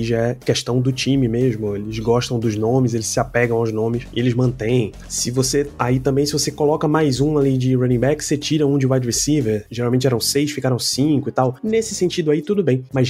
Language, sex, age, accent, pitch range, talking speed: Portuguese, male, 20-39, Brazilian, 120-150 Hz, 230 wpm